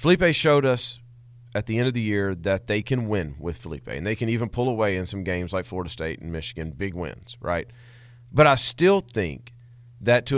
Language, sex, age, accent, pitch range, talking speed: English, male, 40-59, American, 110-140 Hz, 220 wpm